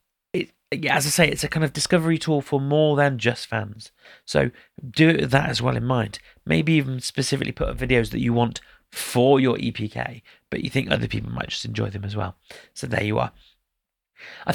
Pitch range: 115-150 Hz